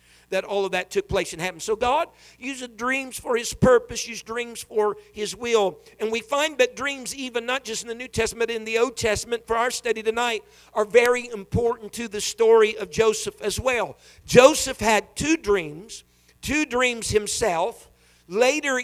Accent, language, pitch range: American, English, 195-245 Hz